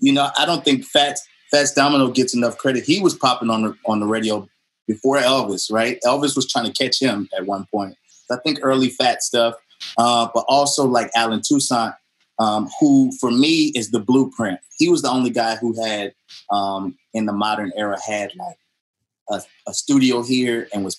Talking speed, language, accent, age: 195 wpm, English, American, 30-49